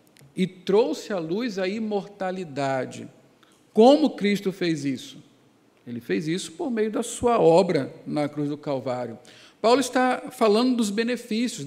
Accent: Brazilian